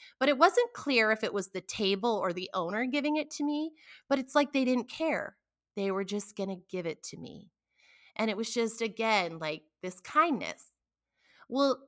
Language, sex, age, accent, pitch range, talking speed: English, female, 30-49, American, 195-320 Hz, 200 wpm